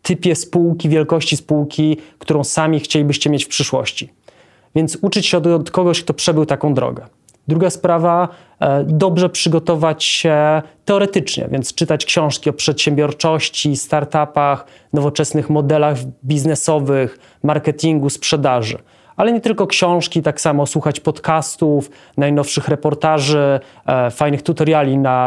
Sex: male